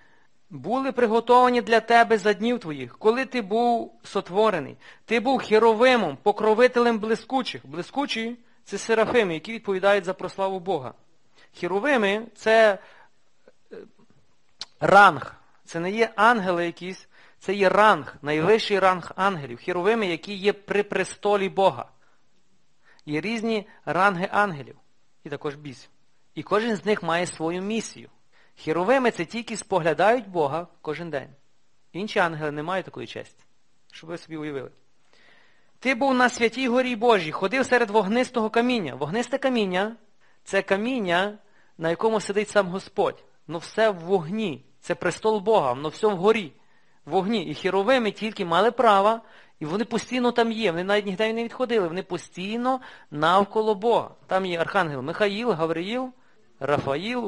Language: Ukrainian